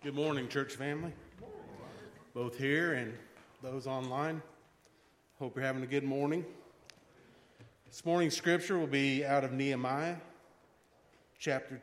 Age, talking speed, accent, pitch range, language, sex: 40-59, 120 wpm, American, 120-155 Hz, English, male